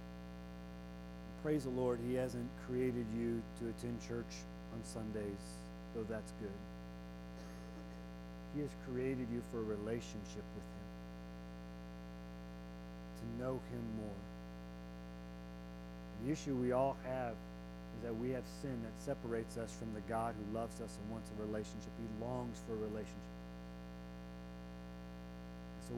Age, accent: 40-59, American